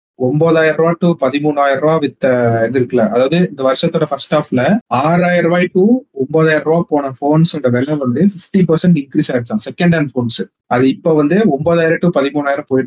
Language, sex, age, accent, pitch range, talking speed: Tamil, male, 30-49, native, 130-175 Hz, 110 wpm